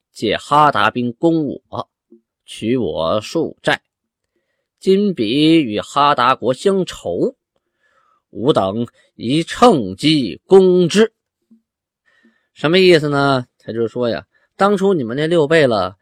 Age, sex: 20-39, male